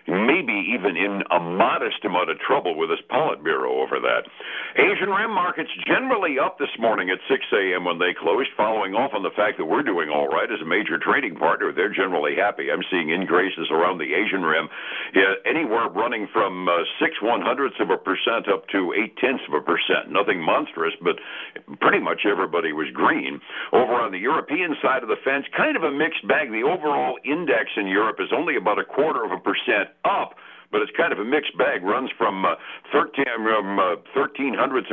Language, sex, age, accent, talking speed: English, male, 60-79, American, 200 wpm